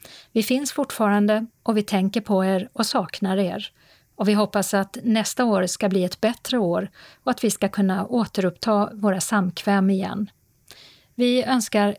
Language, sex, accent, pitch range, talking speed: Swedish, female, native, 195-230 Hz, 165 wpm